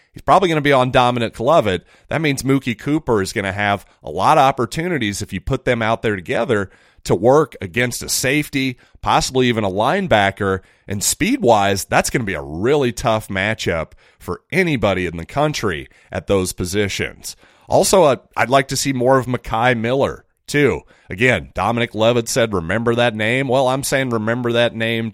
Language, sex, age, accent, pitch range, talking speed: English, male, 30-49, American, 95-125 Hz, 185 wpm